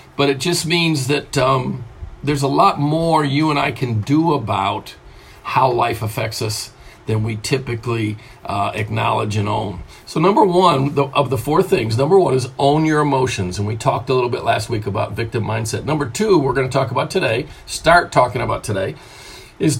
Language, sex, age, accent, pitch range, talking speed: English, male, 50-69, American, 110-145 Hz, 195 wpm